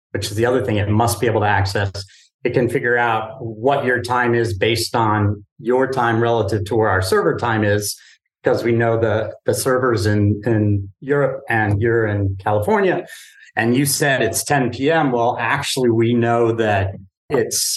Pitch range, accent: 105-130 Hz, American